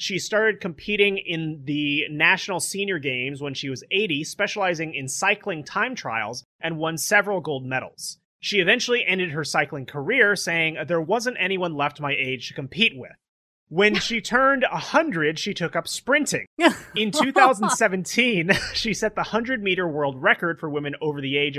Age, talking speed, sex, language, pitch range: 30-49, 165 wpm, male, English, 145-195 Hz